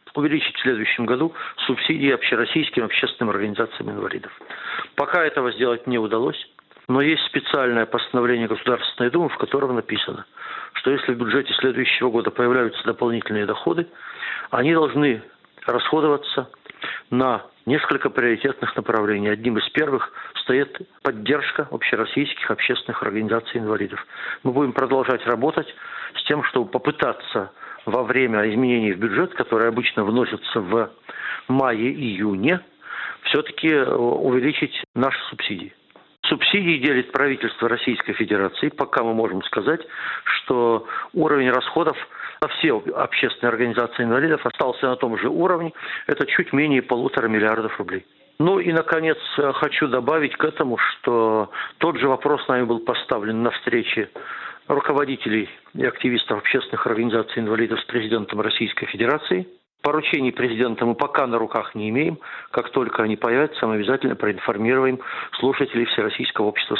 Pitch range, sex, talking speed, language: 115-140 Hz, male, 130 wpm, Russian